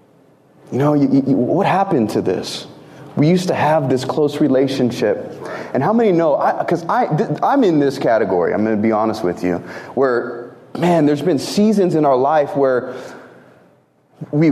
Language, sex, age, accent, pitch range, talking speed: English, male, 30-49, American, 145-200 Hz, 180 wpm